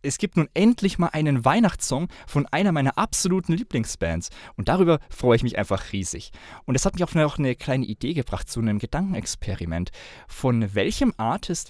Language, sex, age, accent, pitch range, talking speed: German, male, 20-39, German, 110-155 Hz, 180 wpm